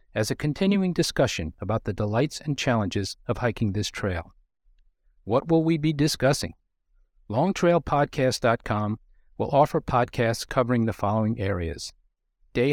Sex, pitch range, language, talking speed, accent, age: male, 105-145 Hz, English, 125 wpm, American, 50-69